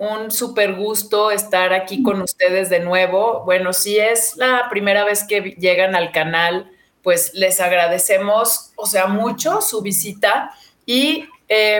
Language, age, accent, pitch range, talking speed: Spanish, 40-59, Mexican, 180-215 Hz, 145 wpm